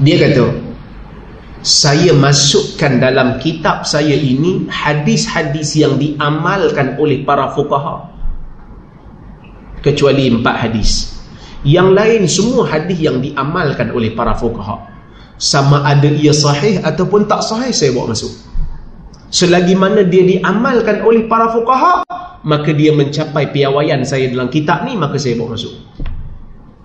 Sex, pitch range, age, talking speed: male, 140-220 Hz, 30-49, 125 wpm